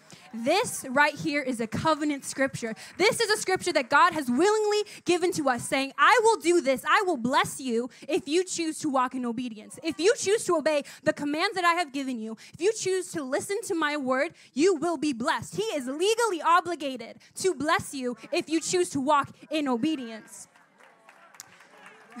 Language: English